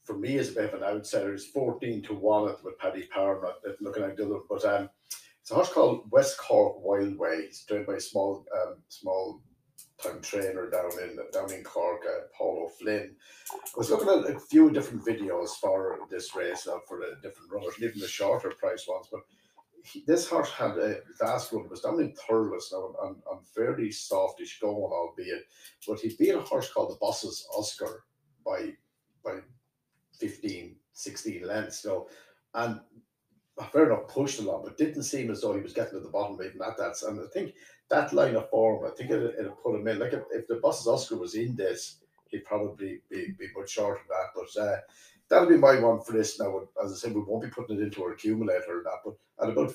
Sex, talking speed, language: male, 215 wpm, English